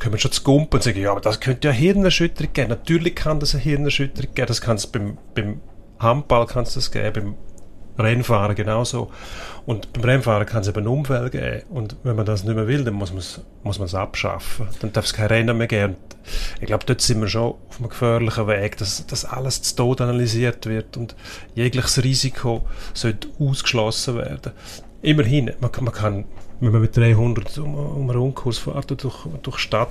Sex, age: male, 30-49